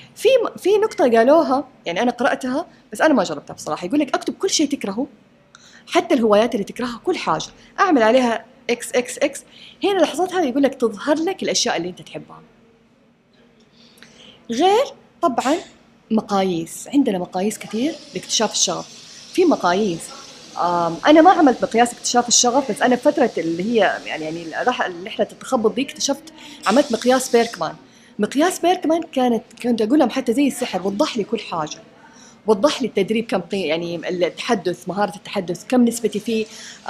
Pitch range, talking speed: 205-275 Hz, 150 wpm